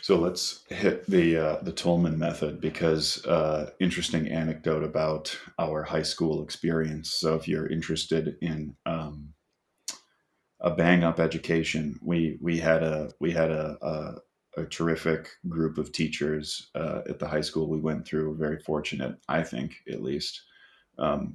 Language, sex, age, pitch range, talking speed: English, male, 30-49, 75-85 Hz, 155 wpm